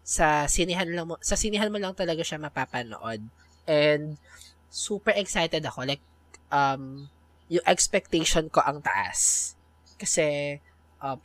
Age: 20-39